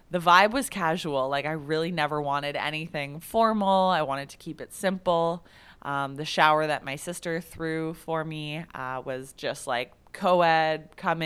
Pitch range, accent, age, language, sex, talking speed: 145-175 Hz, American, 20-39, English, female, 170 wpm